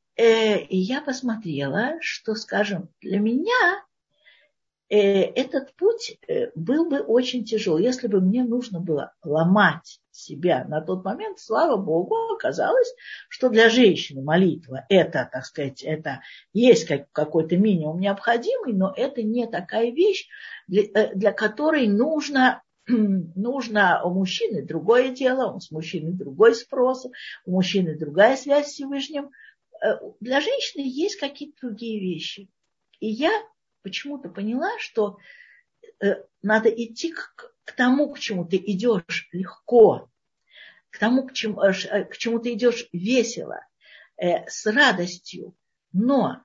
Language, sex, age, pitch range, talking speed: Russian, female, 50-69, 190-275 Hz, 120 wpm